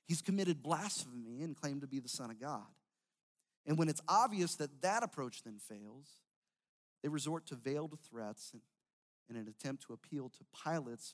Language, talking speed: English, 180 wpm